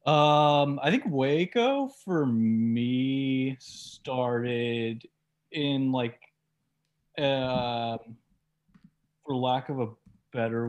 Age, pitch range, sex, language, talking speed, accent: 20-39, 110-135 Hz, male, English, 85 wpm, American